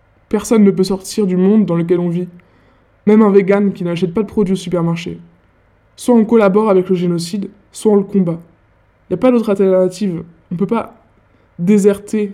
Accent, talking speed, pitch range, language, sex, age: French, 200 wpm, 170-200 Hz, French, male, 20-39